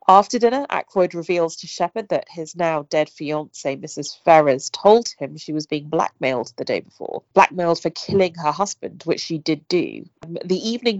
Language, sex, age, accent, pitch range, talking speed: English, female, 30-49, British, 150-185 Hz, 180 wpm